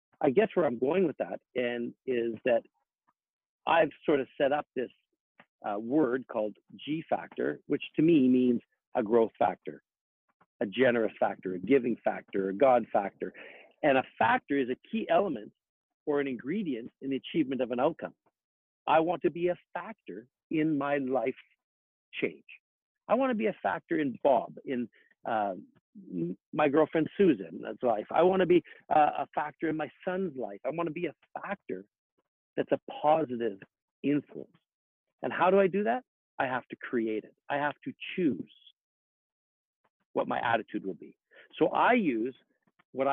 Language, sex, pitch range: English, male, 120-165 Hz